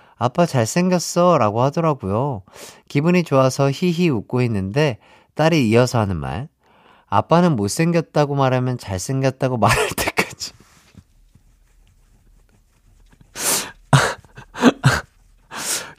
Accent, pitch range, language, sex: native, 110-170 Hz, Korean, male